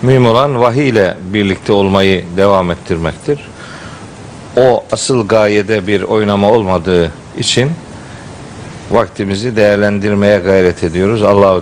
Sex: male